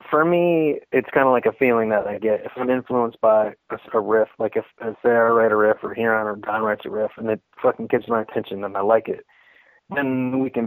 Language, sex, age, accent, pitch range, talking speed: English, male, 30-49, American, 110-125 Hz, 255 wpm